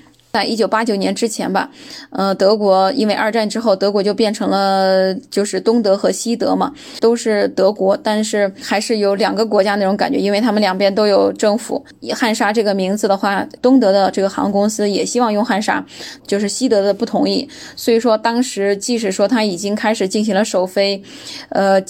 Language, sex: Chinese, female